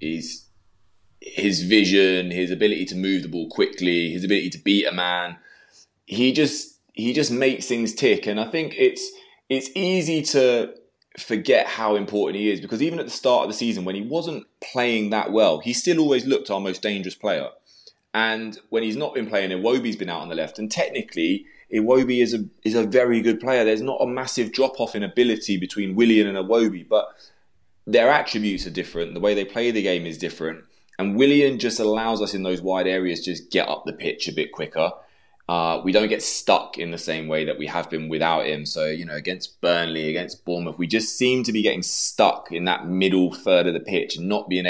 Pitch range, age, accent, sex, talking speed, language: 90-120 Hz, 20-39, British, male, 215 wpm, English